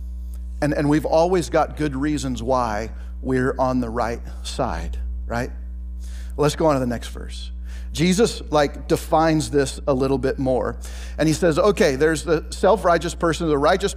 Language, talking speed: English, 170 wpm